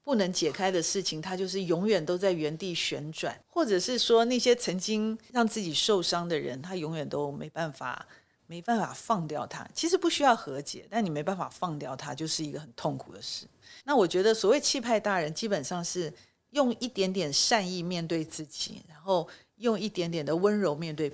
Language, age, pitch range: Chinese, 40-59, 165-225 Hz